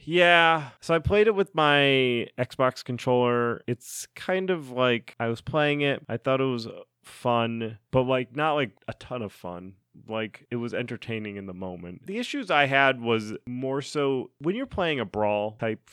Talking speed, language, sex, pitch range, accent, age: 190 wpm, English, male, 105-140 Hz, American, 30-49